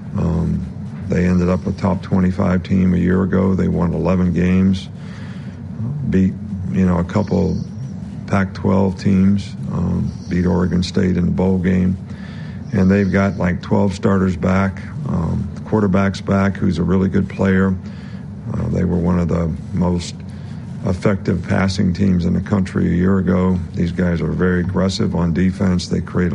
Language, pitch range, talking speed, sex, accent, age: English, 90-95 Hz, 160 wpm, male, American, 50-69